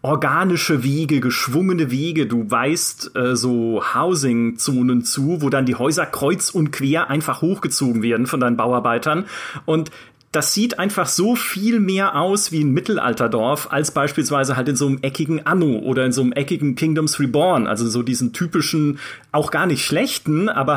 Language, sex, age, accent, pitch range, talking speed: German, male, 30-49, German, 130-175 Hz, 170 wpm